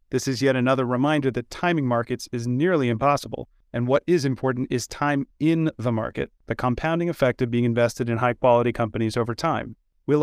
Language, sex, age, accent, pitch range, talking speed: English, male, 30-49, American, 120-145 Hz, 190 wpm